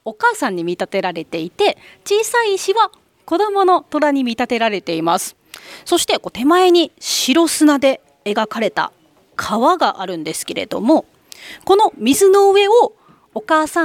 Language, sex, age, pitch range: Japanese, female, 30-49, 215-355 Hz